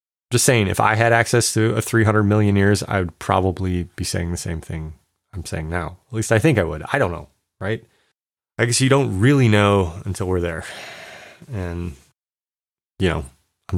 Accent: American